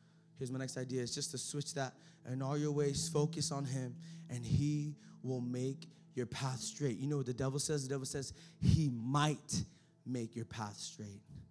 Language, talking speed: English, 200 wpm